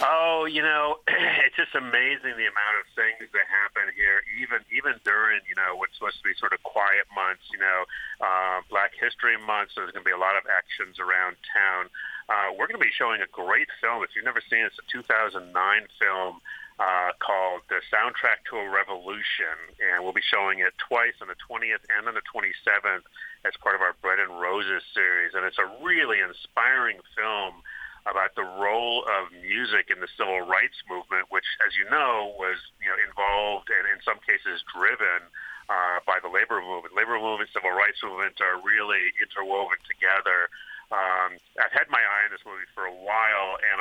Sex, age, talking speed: male, 40-59, 195 wpm